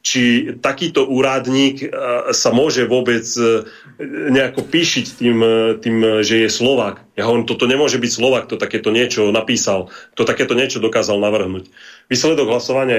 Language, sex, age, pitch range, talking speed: Slovak, male, 30-49, 105-120 Hz, 140 wpm